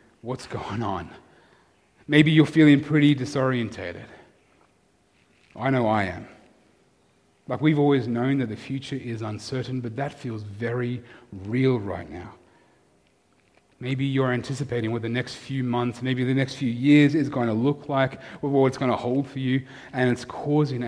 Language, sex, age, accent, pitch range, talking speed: English, male, 30-49, Australian, 115-140 Hz, 160 wpm